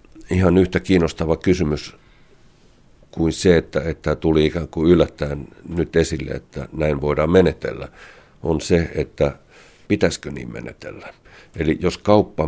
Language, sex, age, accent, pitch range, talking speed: Finnish, male, 60-79, native, 70-85 Hz, 130 wpm